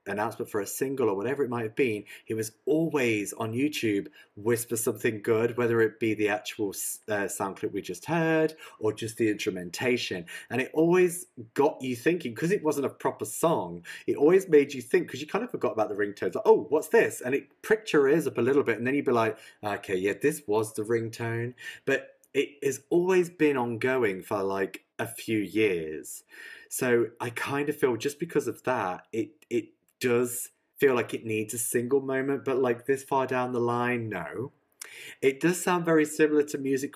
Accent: British